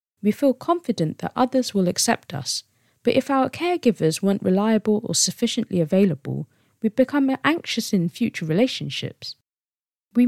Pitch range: 155-245 Hz